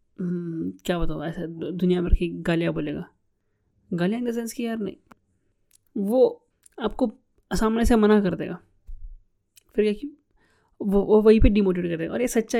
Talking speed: 150 wpm